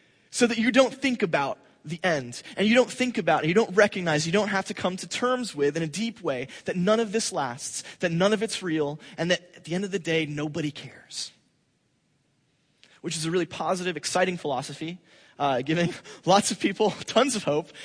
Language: English